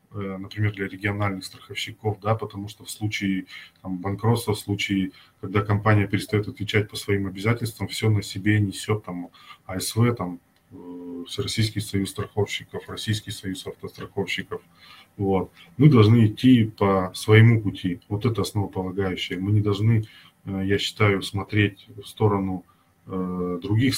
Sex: male